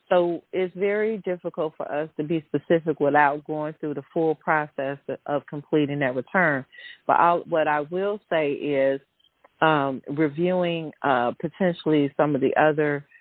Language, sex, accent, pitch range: English, female, American, 140-165 Hz